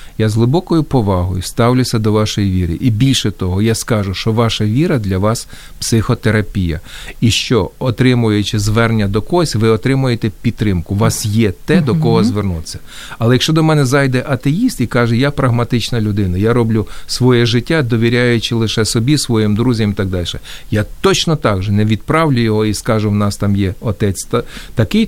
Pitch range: 105-135 Hz